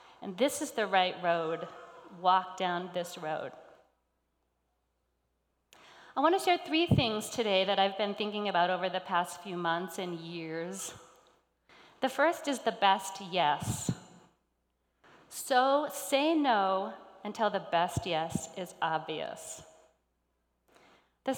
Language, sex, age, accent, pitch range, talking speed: English, female, 40-59, American, 175-240 Hz, 125 wpm